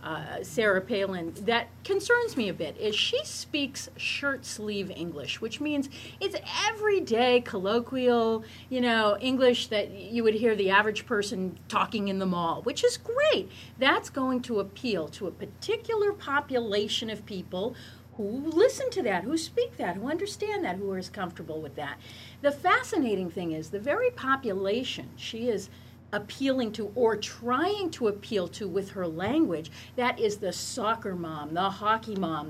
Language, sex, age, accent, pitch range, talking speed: English, female, 40-59, American, 200-280 Hz, 165 wpm